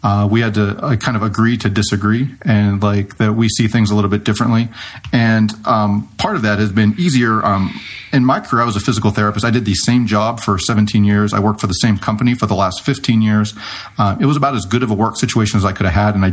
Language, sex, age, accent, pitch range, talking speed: English, male, 40-59, American, 100-115 Hz, 270 wpm